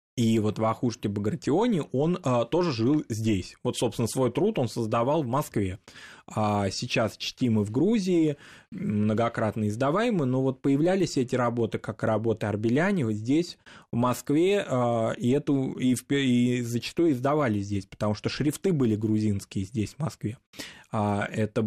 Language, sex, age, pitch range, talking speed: Russian, male, 20-39, 110-140 Hz, 150 wpm